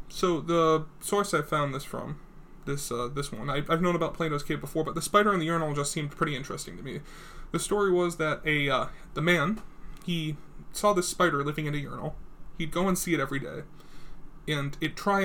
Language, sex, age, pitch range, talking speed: English, male, 20-39, 150-180 Hz, 215 wpm